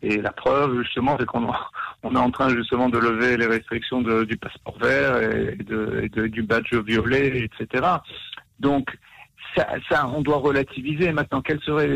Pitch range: 115-135 Hz